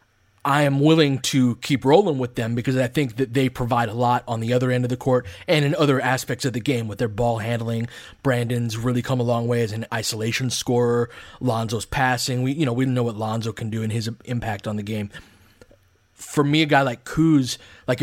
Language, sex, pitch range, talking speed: English, male, 115-135 Hz, 225 wpm